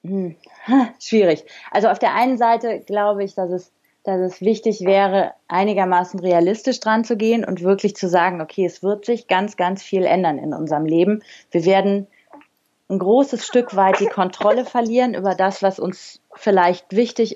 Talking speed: 175 wpm